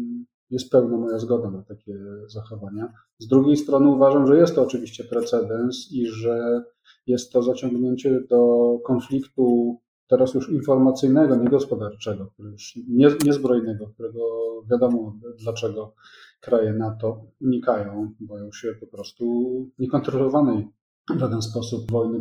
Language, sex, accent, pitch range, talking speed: Polish, male, native, 110-135 Hz, 125 wpm